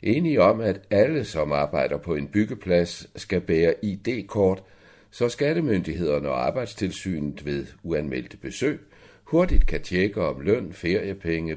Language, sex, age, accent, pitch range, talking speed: Danish, male, 60-79, native, 80-105 Hz, 130 wpm